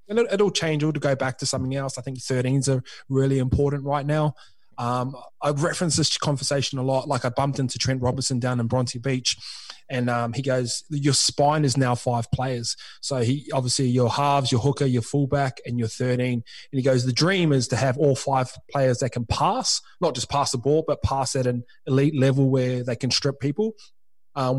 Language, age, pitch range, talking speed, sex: English, 20-39, 125-145 Hz, 215 wpm, male